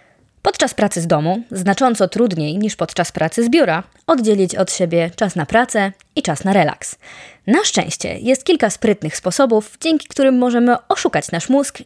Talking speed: 165 wpm